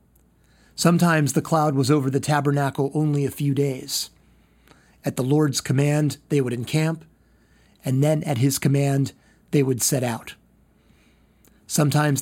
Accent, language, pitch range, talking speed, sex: American, English, 130-160 Hz, 140 wpm, male